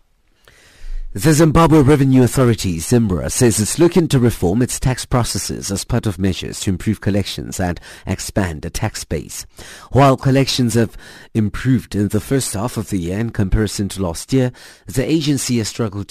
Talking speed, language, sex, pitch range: 170 wpm, English, male, 90-125 Hz